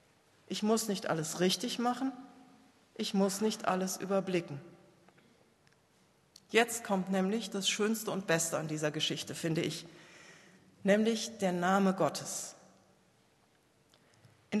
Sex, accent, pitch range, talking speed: female, German, 175-220 Hz, 115 wpm